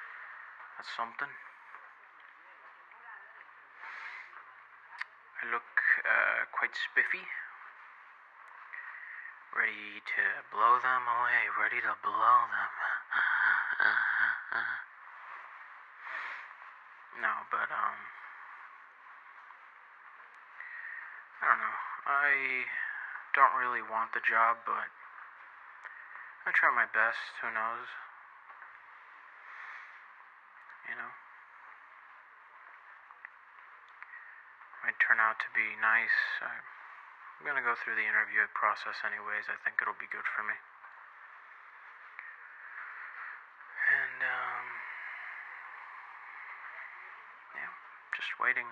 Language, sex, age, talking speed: English, male, 30-49, 80 wpm